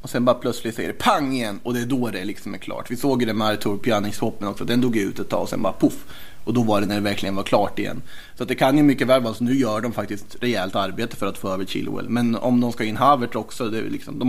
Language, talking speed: Swedish, 295 wpm